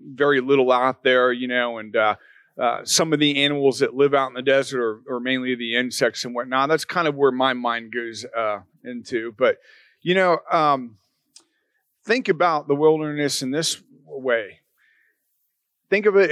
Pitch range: 130-170 Hz